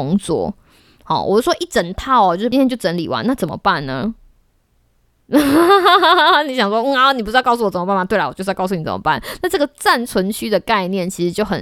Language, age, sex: Chinese, 20-39, female